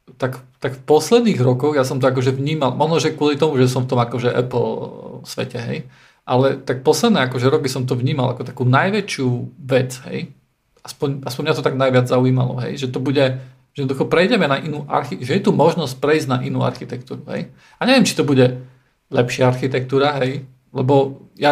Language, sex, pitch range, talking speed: Slovak, male, 130-150 Hz, 195 wpm